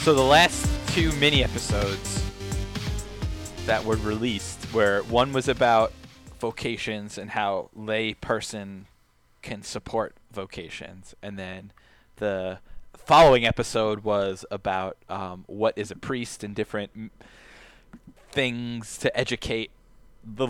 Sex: male